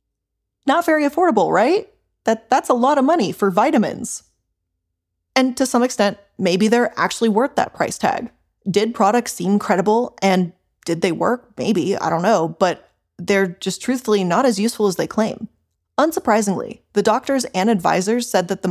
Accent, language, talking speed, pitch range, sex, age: American, English, 170 wpm, 180-230 Hz, female, 20-39